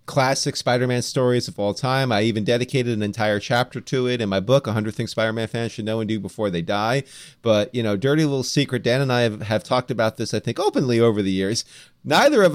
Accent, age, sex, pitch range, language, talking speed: American, 30-49, male, 110-140 Hz, English, 245 wpm